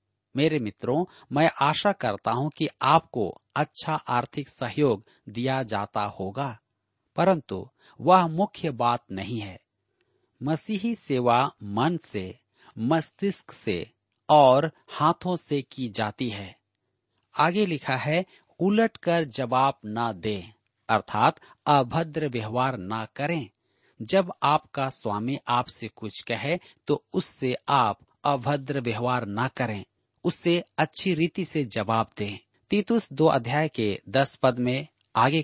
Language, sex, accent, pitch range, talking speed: Hindi, male, native, 115-160 Hz, 120 wpm